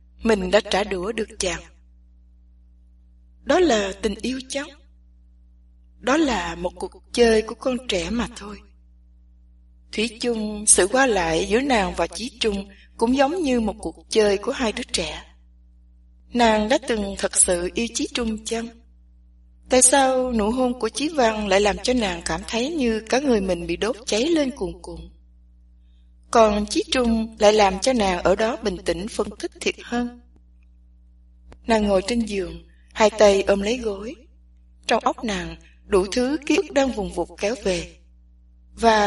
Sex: female